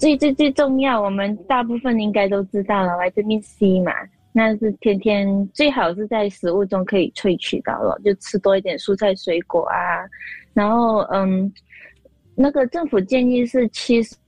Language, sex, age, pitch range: Chinese, female, 20-39, 185-230 Hz